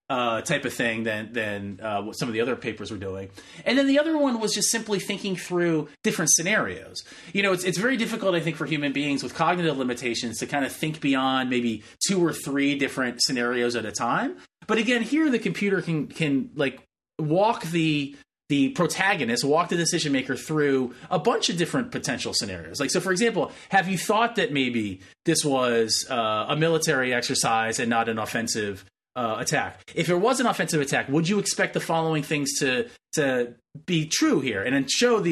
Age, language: 30-49, English